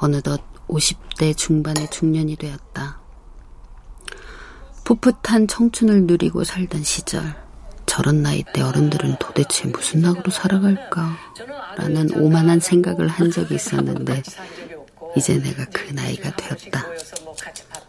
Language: Korean